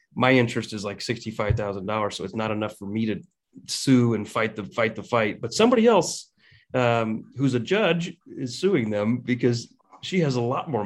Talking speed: 205 wpm